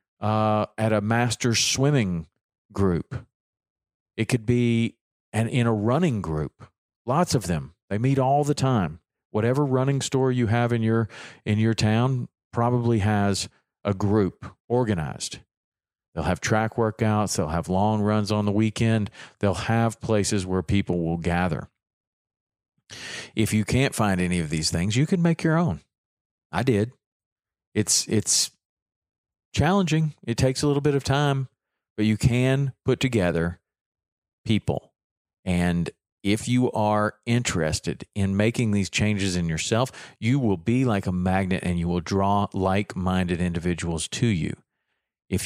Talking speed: 150 wpm